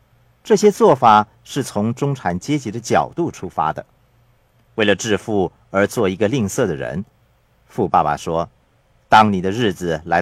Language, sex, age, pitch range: Chinese, male, 50-69, 110-135 Hz